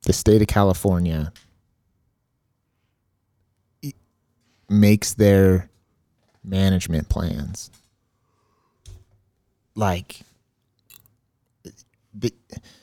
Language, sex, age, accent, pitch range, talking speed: English, male, 30-49, American, 100-135 Hz, 45 wpm